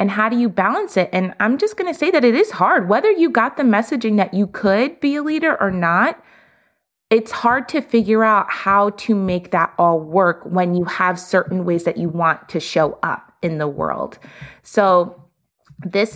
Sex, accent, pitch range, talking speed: female, American, 175-215 Hz, 210 wpm